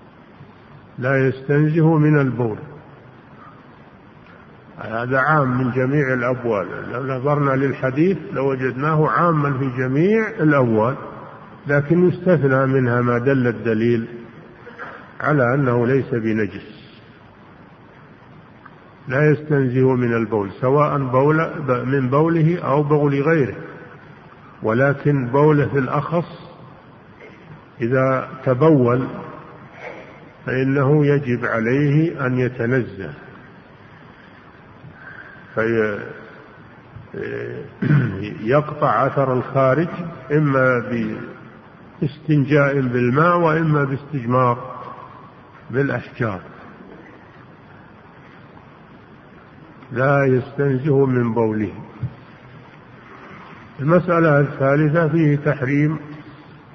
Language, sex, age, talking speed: Arabic, male, 50-69, 70 wpm